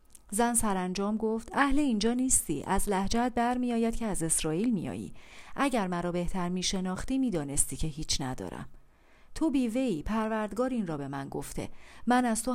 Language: Persian